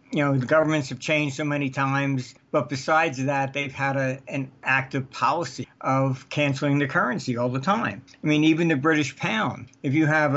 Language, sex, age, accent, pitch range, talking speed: English, male, 60-79, American, 135-160 Hz, 195 wpm